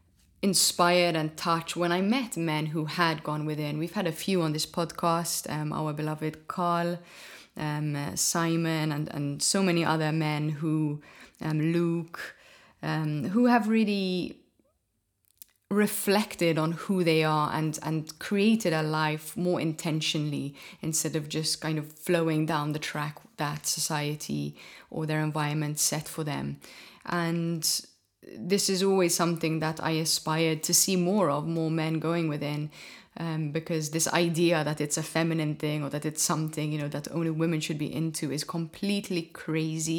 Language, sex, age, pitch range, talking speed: English, female, 20-39, 155-170 Hz, 160 wpm